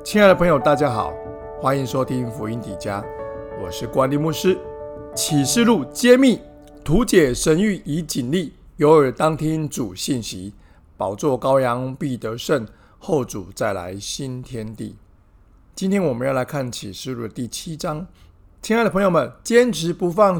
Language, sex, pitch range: Chinese, male, 120-170 Hz